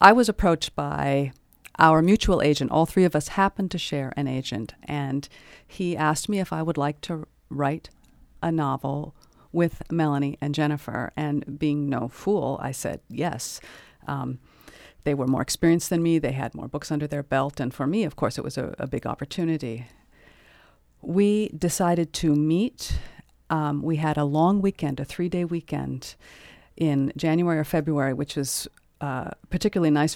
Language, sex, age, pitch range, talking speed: English, female, 50-69, 140-165 Hz, 170 wpm